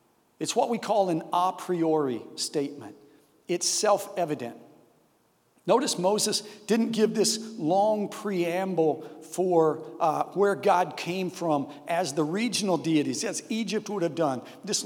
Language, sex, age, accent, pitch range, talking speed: English, male, 50-69, American, 165-205 Hz, 135 wpm